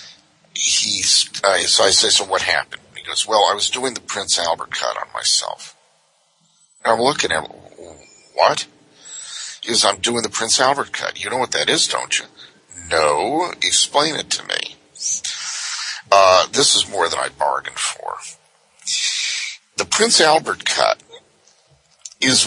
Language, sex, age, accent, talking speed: English, male, 50-69, American, 155 wpm